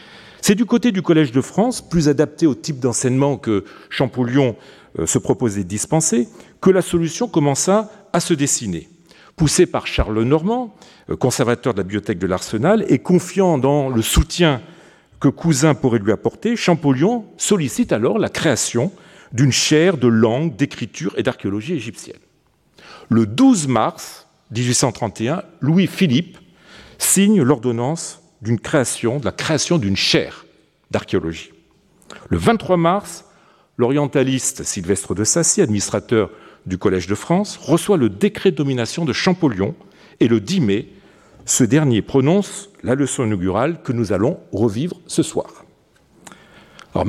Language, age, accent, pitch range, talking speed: French, 40-59, French, 120-175 Hz, 140 wpm